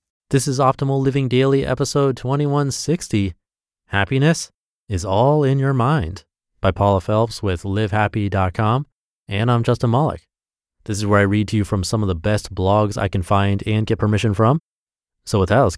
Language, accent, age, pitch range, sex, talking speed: English, American, 30-49, 90-125 Hz, male, 175 wpm